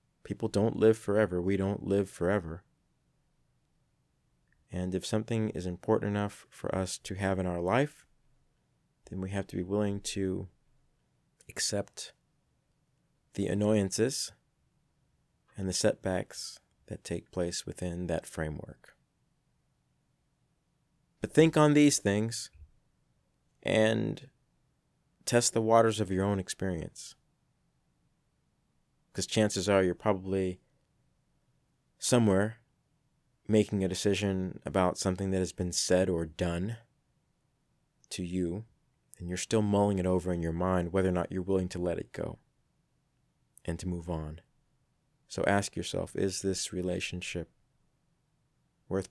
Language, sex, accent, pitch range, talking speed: English, male, American, 90-110 Hz, 125 wpm